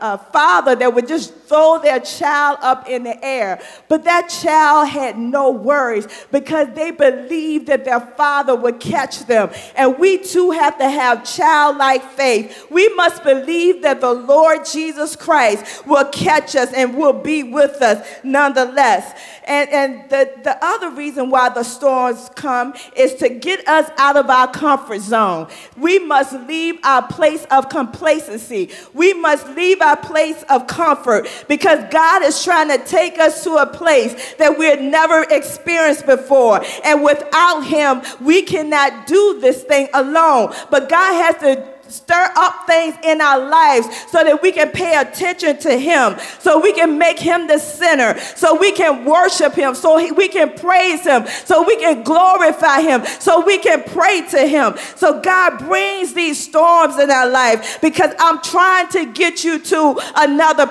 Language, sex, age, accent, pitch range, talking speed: English, female, 40-59, American, 275-335 Hz, 170 wpm